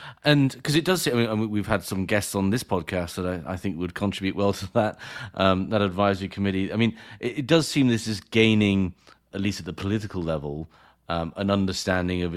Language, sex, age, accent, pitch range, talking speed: English, male, 40-59, British, 85-100 Hz, 225 wpm